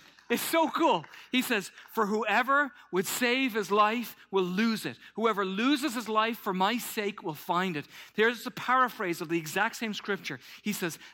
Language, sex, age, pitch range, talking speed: English, male, 40-59, 145-230 Hz, 185 wpm